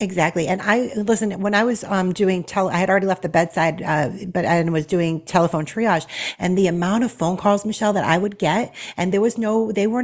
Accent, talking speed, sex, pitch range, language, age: American, 240 wpm, female, 160-190 Hz, English, 40-59